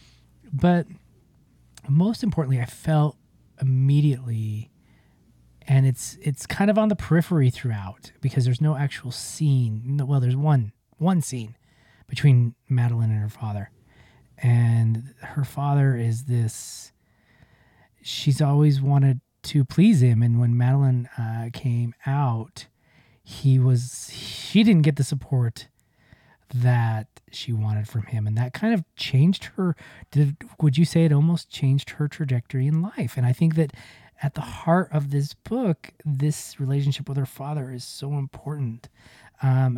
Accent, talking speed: American, 145 wpm